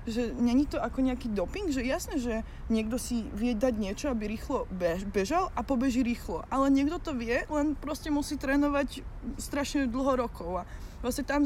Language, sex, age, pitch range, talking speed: Slovak, female, 20-39, 225-270 Hz, 180 wpm